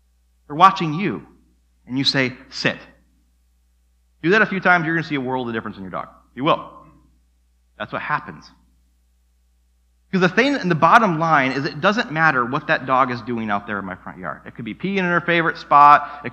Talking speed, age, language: 215 wpm, 30-49, English